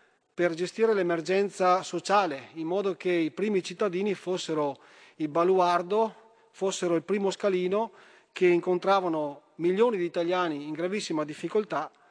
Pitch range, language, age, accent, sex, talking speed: 160-195 Hz, Italian, 40-59, native, male, 125 wpm